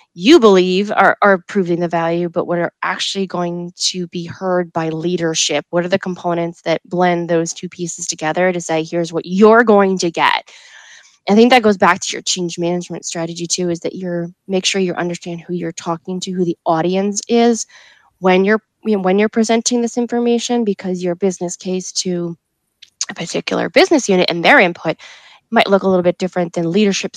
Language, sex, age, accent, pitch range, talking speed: English, female, 20-39, American, 170-195 Hz, 195 wpm